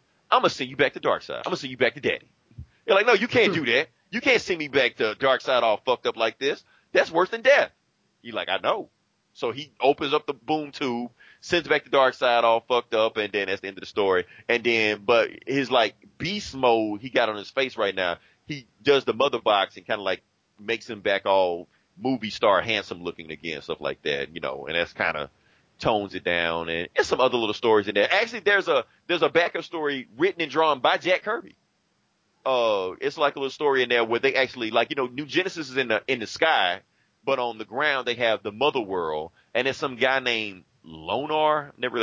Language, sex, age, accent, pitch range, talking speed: English, male, 30-49, American, 105-150 Hz, 240 wpm